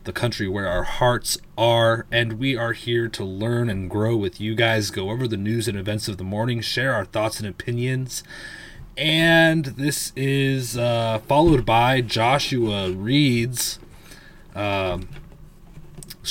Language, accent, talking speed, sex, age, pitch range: English, American, 145 wpm, male, 30-49, 100-120 Hz